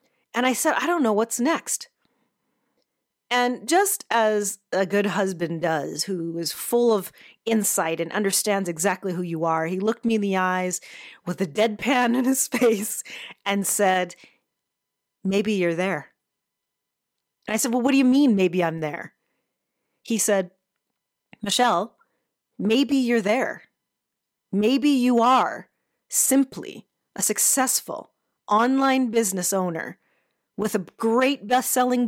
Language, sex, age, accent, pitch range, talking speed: English, female, 40-59, American, 190-250 Hz, 135 wpm